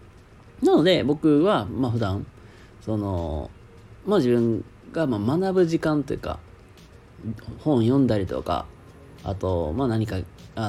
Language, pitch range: Japanese, 100-155 Hz